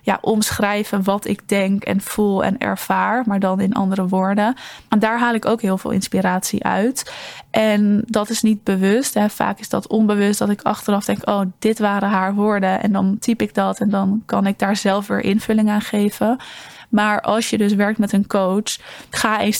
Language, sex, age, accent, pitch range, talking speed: Dutch, female, 20-39, Dutch, 195-220 Hz, 200 wpm